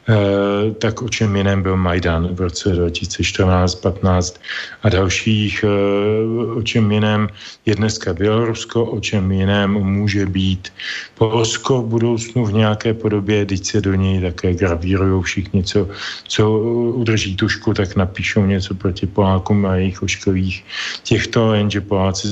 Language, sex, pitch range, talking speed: Slovak, male, 100-110 Hz, 135 wpm